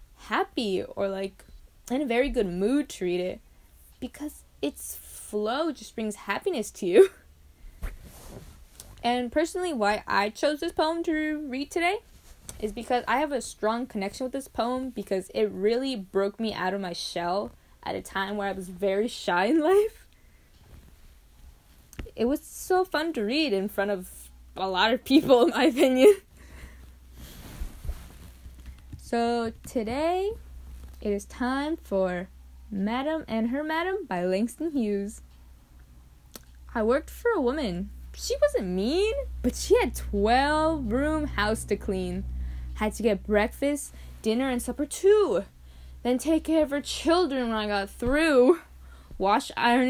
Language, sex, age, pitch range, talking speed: English, female, 10-29, 185-295 Hz, 145 wpm